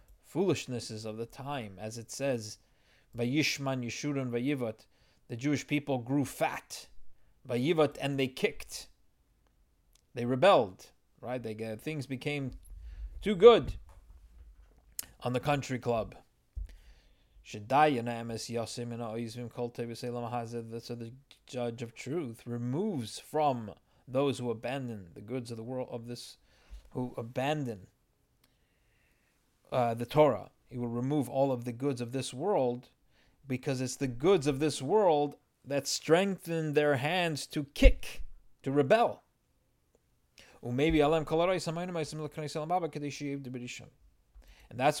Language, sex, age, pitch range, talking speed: English, male, 30-49, 115-145 Hz, 105 wpm